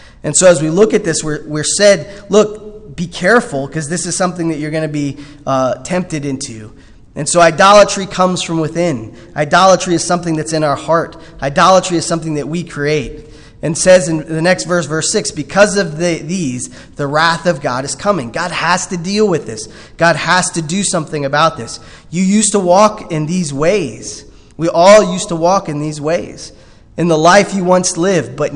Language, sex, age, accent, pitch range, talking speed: English, male, 20-39, American, 140-175 Hz, 200 wpm